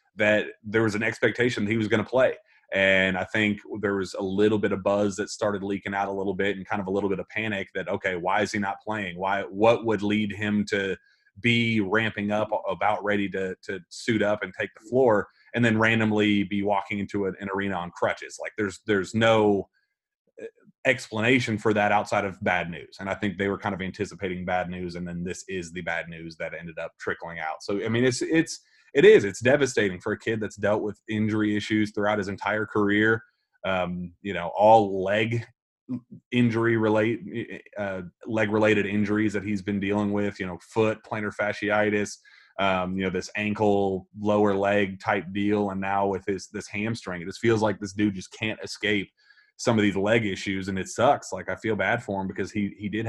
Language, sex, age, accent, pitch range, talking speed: English, male, 30-49, American, 95-110 Hz, 215 wpm